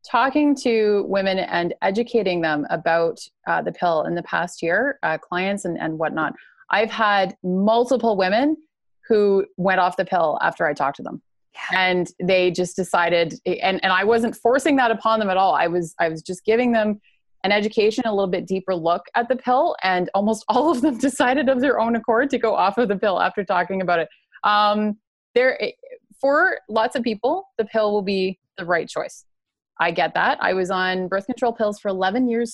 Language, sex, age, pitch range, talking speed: English, female, 20-39, 180-230 Hz, 200 wpm